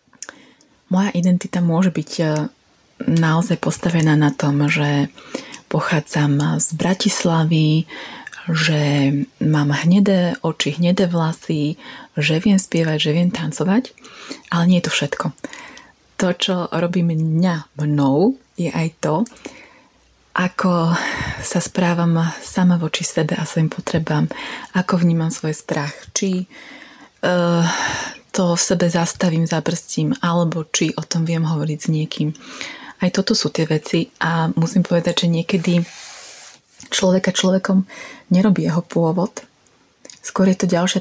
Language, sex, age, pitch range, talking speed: Slovak, female, 30-49, 160-185 Hz, 125 wpm